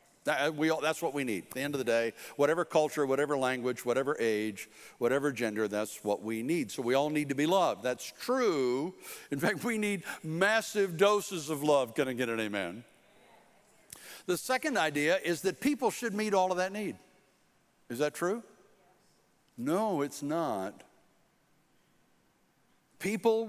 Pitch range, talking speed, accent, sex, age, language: 150-225 Hz, 160 wpm, American, male, 60-79, English